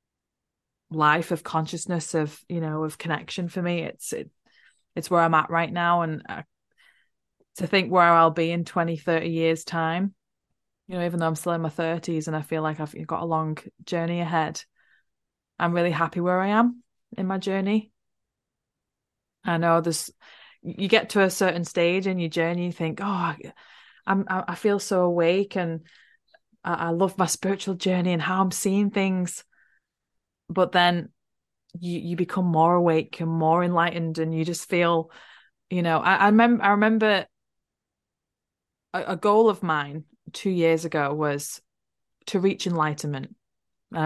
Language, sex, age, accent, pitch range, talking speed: English, female, 20-39, British, 160-185 Hz, 170 wpm